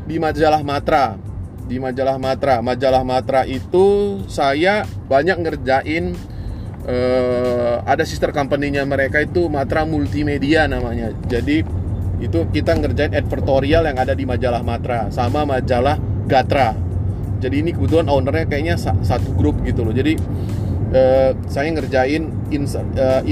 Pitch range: 95-125 Hz